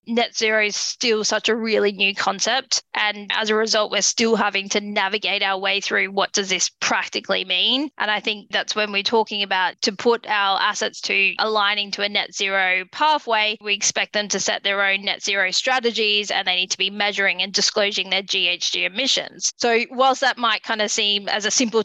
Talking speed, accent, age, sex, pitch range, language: 210 wpm, Australian, 20-39, female, 195-225 Hz, English